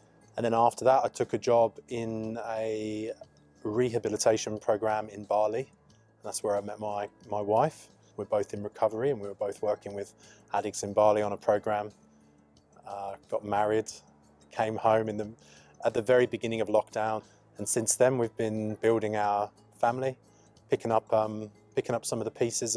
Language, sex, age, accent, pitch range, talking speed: English, male, 20-39, British, 105-115 Hz, 175 wpm